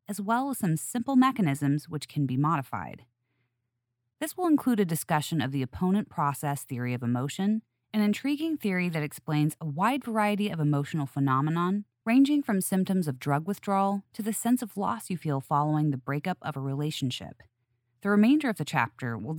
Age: 30-49